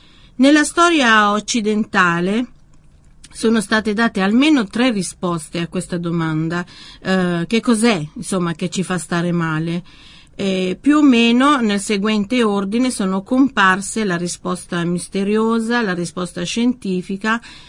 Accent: native